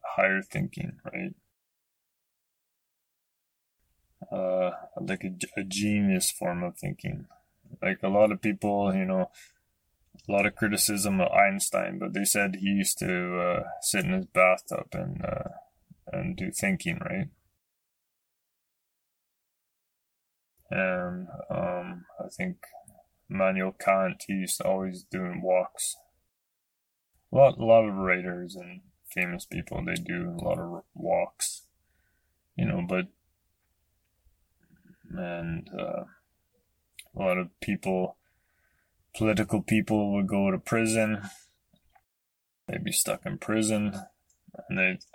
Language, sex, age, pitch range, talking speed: English, male, 20-39, 90-110 Hz, 120 wpm